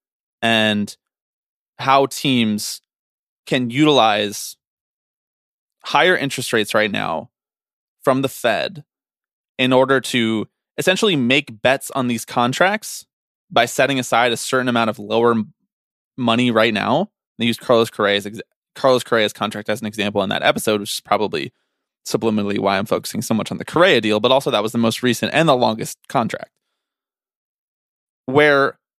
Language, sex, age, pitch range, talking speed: English, male, 20-39, 110-150 Hz, 150 wpm